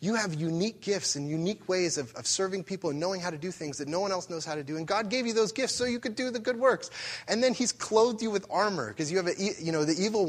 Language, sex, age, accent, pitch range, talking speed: English, male, 20-39, American, 110-175 Hz, 310 wpm